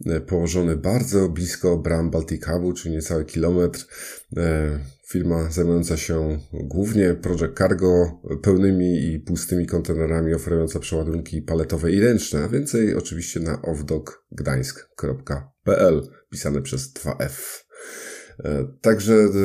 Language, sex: Polish, male